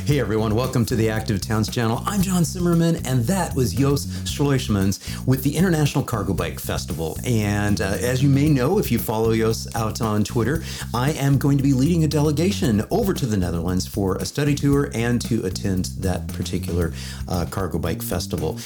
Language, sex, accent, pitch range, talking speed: English, male, American, 100-140 Hz, 195 wpm